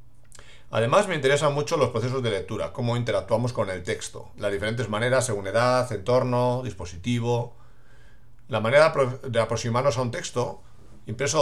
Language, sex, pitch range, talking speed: English, male, 110-125 Hz, 160 wpm